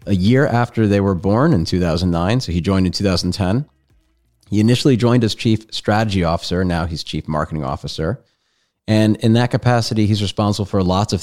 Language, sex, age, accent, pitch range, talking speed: English, male, 30-49, American, 80-100 Hz, 180 wpm